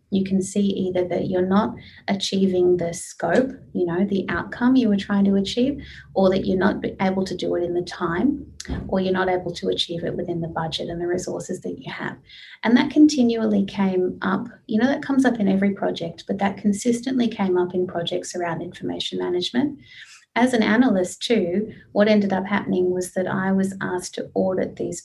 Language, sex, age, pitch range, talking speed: English, female, 30-49, 180-215 Hz, 205 wpm